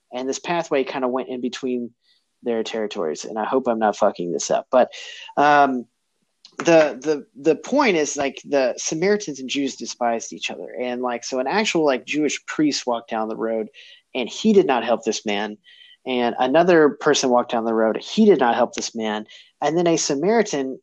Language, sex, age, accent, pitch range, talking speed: English, male, 30-49, American, 125-165 Hz, 200 wpm